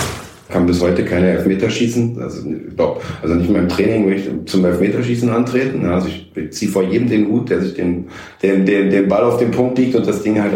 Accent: German